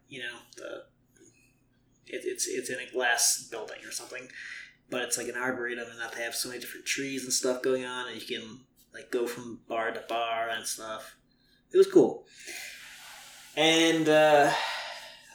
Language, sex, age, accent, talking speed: English, male, 20-39, American, 175 wpm